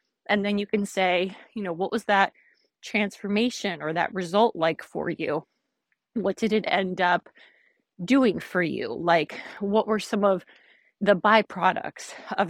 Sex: female